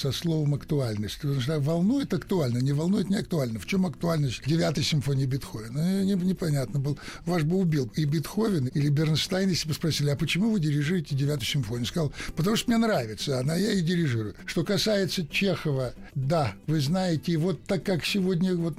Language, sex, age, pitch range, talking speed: Russian, male, 60-79, 140-180 Hz, 180 wpm